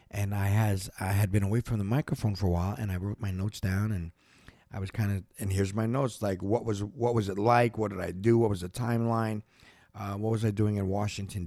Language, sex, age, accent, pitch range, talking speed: English, male, 50-69, American, 95-125 Hz, 260 wpm